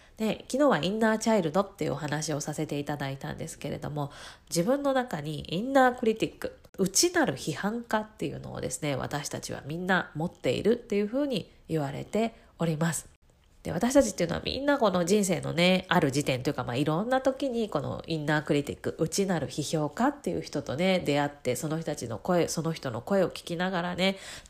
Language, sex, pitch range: Japanese, female, 145-205 Hz